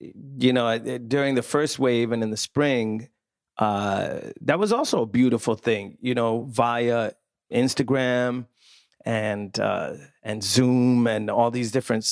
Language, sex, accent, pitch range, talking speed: English, male, American, 115-135 Hz, 145 wpm